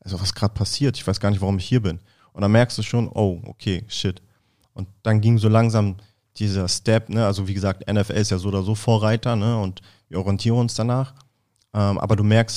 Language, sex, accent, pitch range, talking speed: German, male, German, 100-115 Hz, 225 wpm